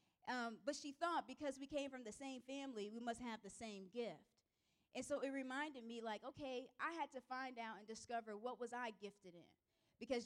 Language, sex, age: English, female, 20-39